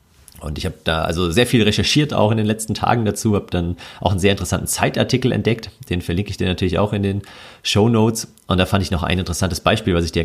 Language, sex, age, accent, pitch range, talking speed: German, male, 40-59, German, 85-105 Hz, 245 wpm